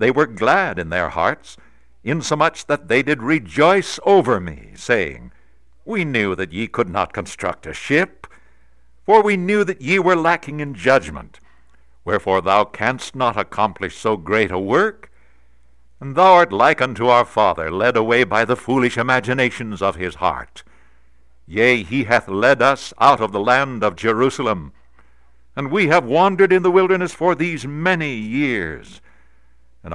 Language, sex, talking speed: English, male, 160 wpm